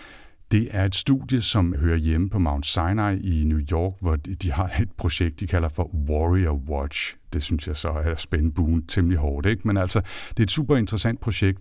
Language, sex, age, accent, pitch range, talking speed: Danish, male, 60-79, native, 80-100 Hz, 205 wpm